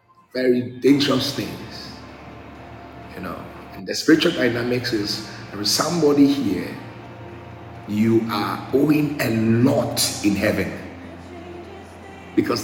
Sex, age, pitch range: male, 50-69, 115-155 Hz